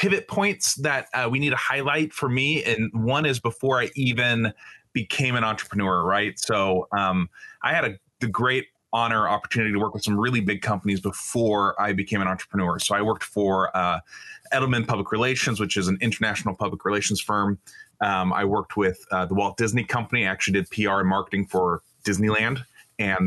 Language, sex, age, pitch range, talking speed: English, male, 30-49, 100-135 Hz, 195 wpm